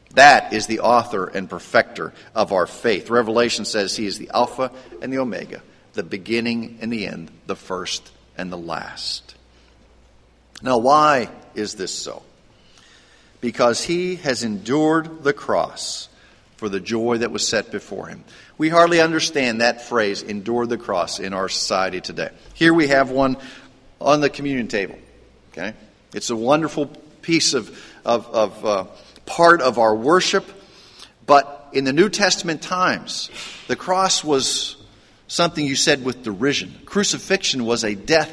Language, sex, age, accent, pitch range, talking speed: English, male, 50-69, American, 115-165 Hz, 155 wpm